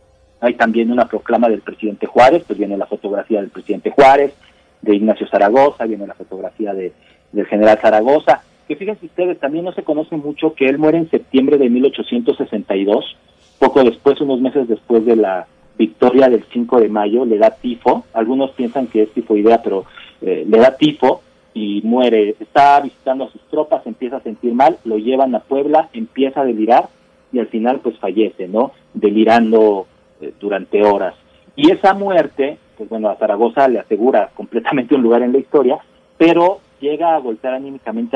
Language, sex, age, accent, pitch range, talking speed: Italian, male, 40-59, Mexican, 110-155 Hz, 180 wpm